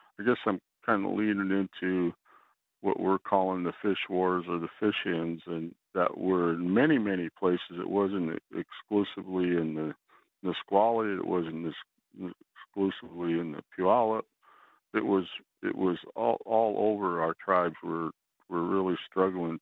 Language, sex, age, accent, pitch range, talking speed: English, male, 60-79, American, 85-100 Hz, 150 wpm